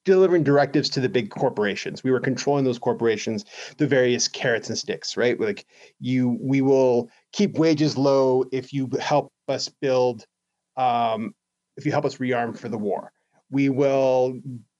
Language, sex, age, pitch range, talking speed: English, male, 30-49, 125-155 Hz, 160 wpm